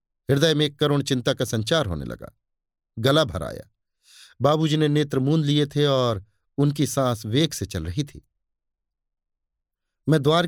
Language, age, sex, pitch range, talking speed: Hindi, 50-69, male, 125-160 Hz, 160 wpm